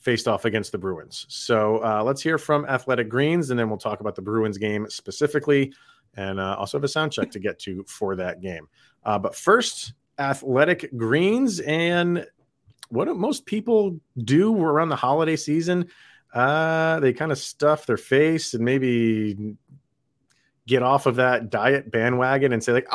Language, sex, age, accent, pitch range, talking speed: English, male, 30-49, American, 110-150 Hz, 175 wpm